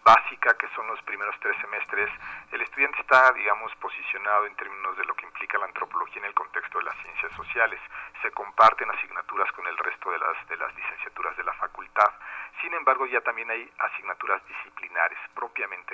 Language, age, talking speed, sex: Spanish, 40-59, 185 wpm, male